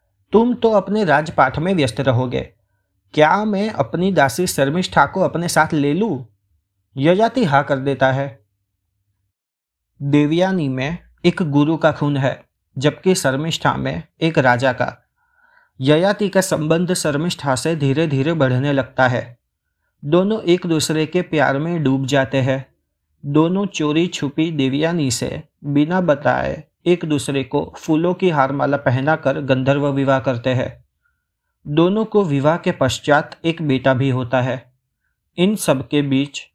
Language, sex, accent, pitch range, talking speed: Hindi, male, native, 130-170 Hz, 145 wpm